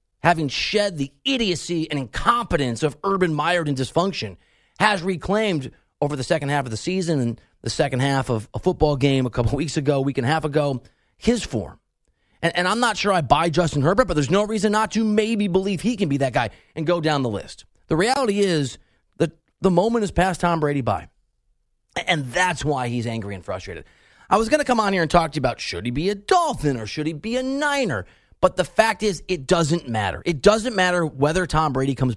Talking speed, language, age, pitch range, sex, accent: 225 wpm, English, 30-49, 130-185 Hz, male, American